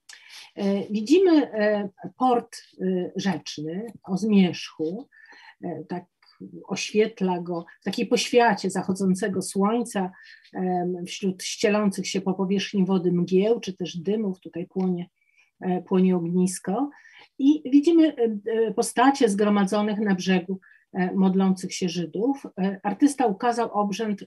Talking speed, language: 95 wpm, Polish